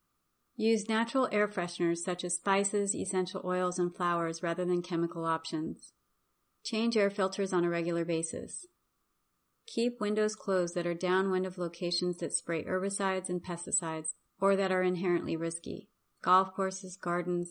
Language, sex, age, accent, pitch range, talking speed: English, female, 30-49, American, 175-200 Hz, 145 wpm